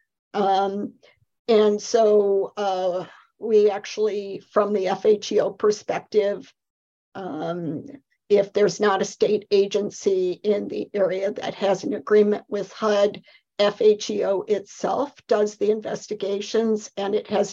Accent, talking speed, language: American, 115 wpm, English